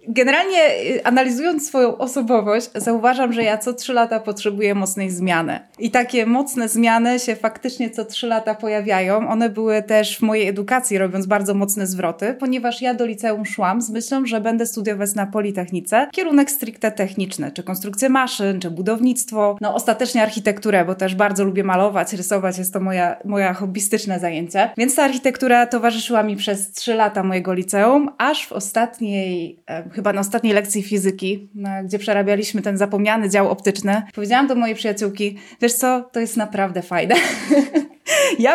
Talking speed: 160 wpm